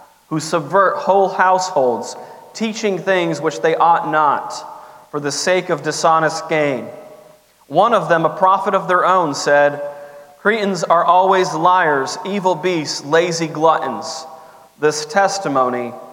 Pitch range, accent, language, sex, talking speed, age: 155-190 Hz, American, English, male, 130 wpm, 30-49